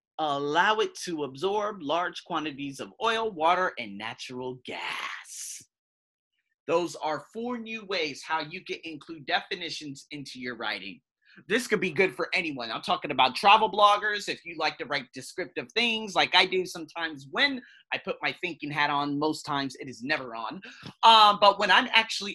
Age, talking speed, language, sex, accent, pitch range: 30-49, 175 wpm, English, male, American, 165-240 Hz